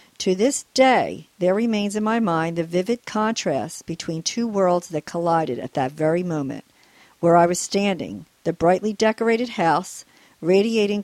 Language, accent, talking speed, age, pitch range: English, American, 160 wpm, 50-69, 165-215 Hz